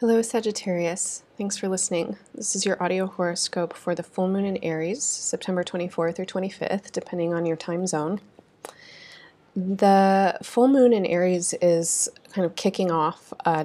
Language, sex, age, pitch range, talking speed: English, female, 30-49, 165-185 Hz, 160 wpm